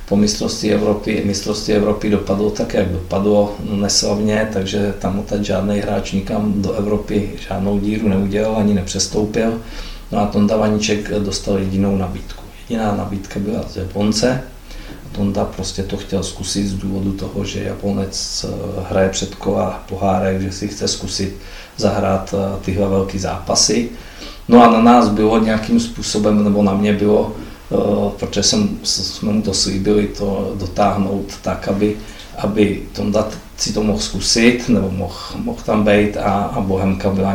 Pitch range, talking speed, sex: 95-105 Hz, 150 wpm, male